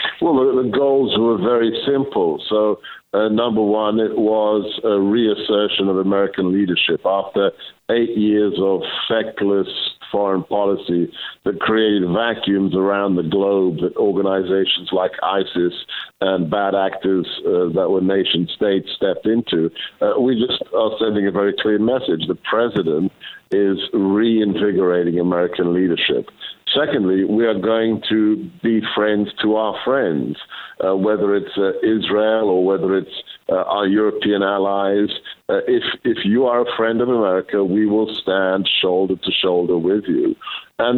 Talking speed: 145 wpm